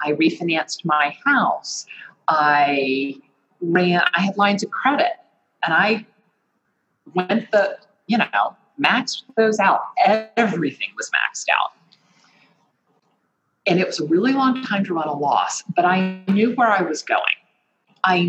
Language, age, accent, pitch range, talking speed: English, 40-59, American, 150-205 Hz, 140 wpm